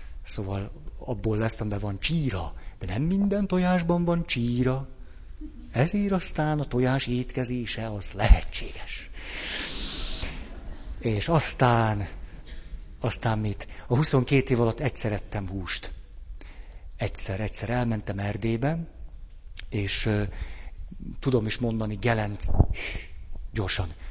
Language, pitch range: Hungarian, 100-125 Hz